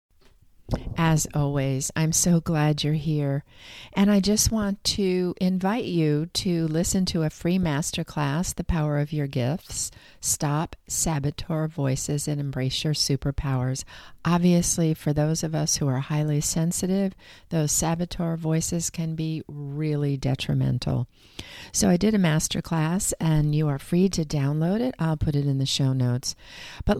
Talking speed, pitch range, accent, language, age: 150 wpm, 135-170 Hz, American, English, 40-59